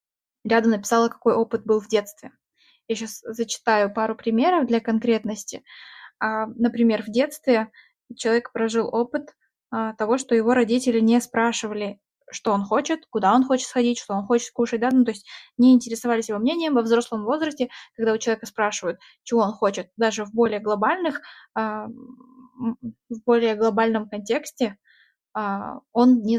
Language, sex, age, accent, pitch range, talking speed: Russian, female, 10-29, native, 220-255 Hz, 140 wpm